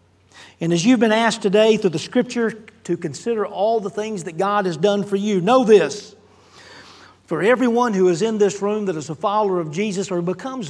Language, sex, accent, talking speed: English, male, American, 210 wpm